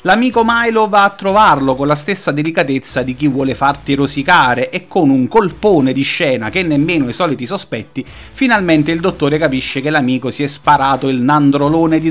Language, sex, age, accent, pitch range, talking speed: Italian, male, 30-49, native, 140-200 Hz, 185 wpm